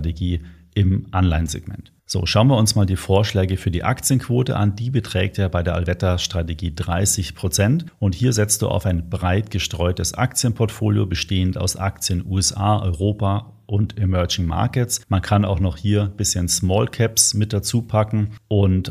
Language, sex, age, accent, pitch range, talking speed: German, male, 40-59, German, 90-105 Hz, 165 wpm